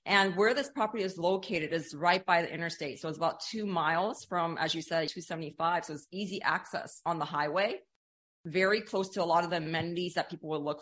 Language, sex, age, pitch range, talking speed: English, female, 30-49, 170-195 Hz, 220 wpm